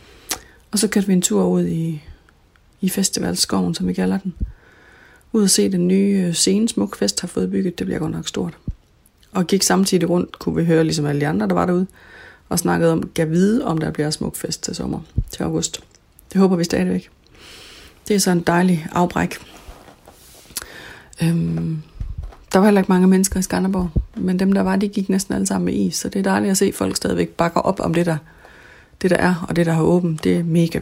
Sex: female